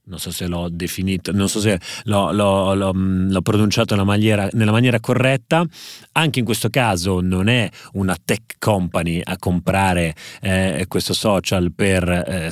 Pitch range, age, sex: 90-110 Hz, 30-49, male